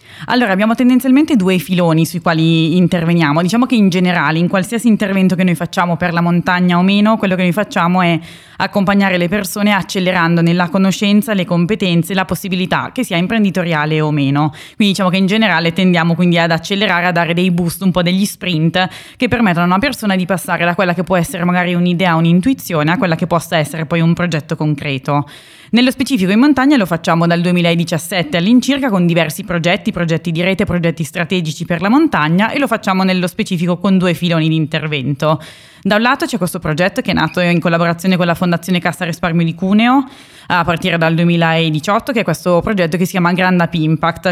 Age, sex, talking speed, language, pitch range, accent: 20-39, female, 195 wpm, Italian, 170-200 Hz, native